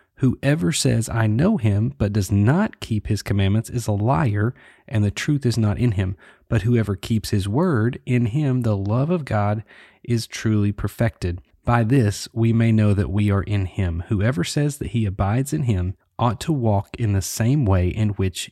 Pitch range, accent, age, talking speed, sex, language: 105-130 Hz, American, 30-49, 200 wpm, male, English